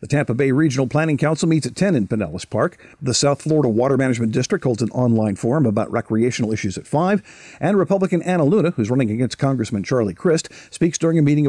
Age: 50-69